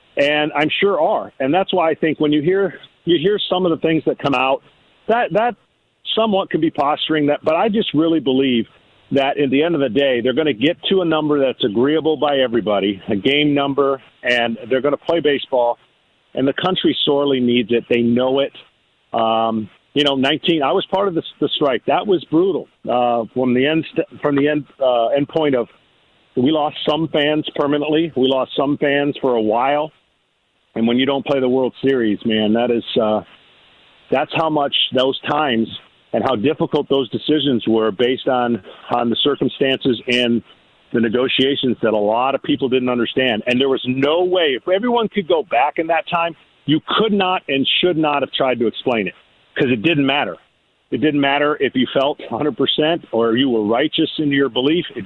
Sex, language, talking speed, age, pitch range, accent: male, English, 205 wpm, 50-69, 125-155 Hz, American